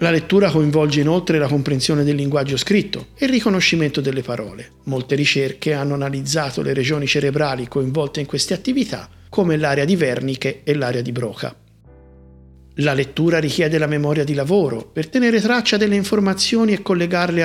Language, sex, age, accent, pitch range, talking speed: Italian, male, 50-69, native, 135-190 Hz, 160 wpm